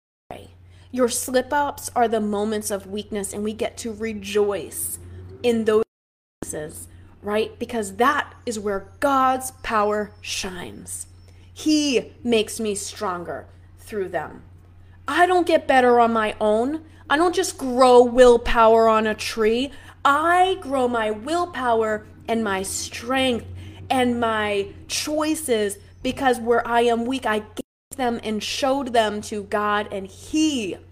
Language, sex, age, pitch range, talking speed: English, female, 20-39, 200-260 Hz, 135 wpm